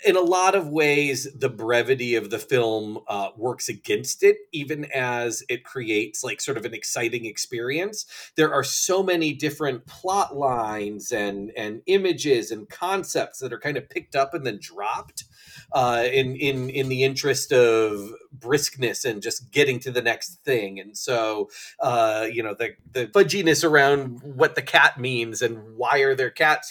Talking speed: 175 wpm